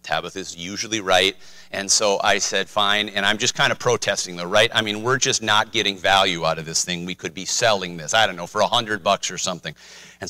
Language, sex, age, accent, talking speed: English, male, 40-59, American, 245 wpm